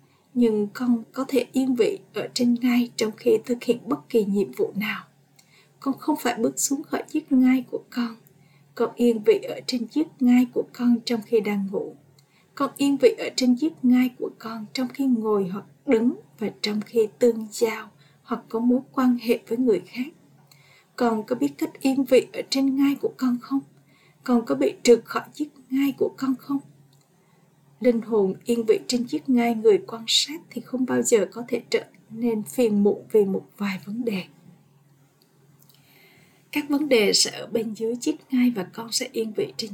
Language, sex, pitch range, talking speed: Vietnamese, female, 200-260 Hz, 195 wpm